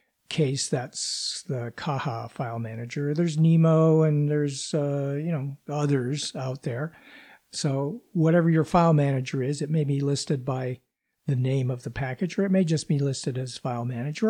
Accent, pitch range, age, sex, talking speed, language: American, 135-170 Hz, 50-69, male, 170 wpm, English